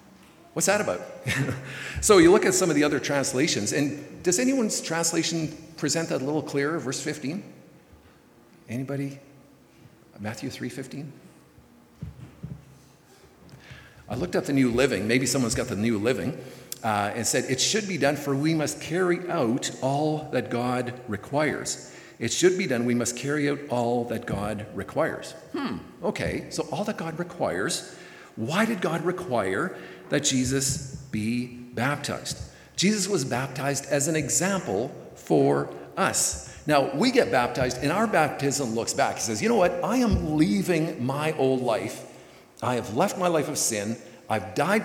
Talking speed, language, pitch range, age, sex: 160 wpm, English, 120-160 Hz, 50-69, male